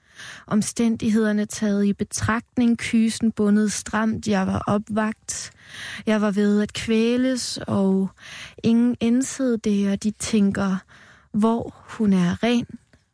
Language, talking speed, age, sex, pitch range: Danish, 110 wpm, 20-39, female, 205-230 Hz